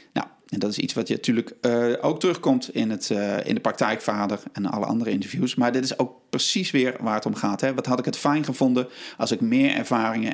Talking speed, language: 225 wpm, Dutch